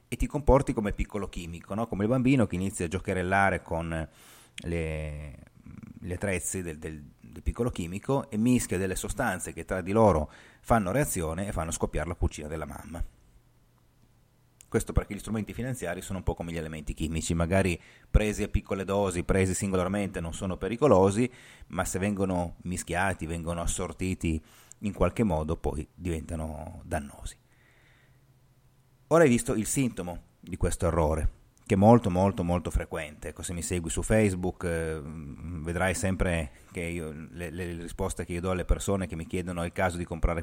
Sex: male